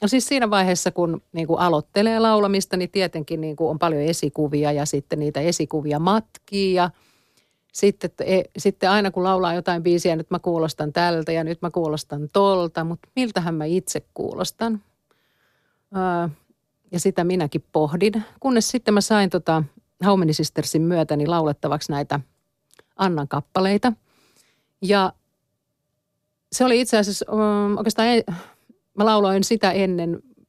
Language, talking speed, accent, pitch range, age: Finnish, 140 wpm, native, 160-195 Hz, 40-59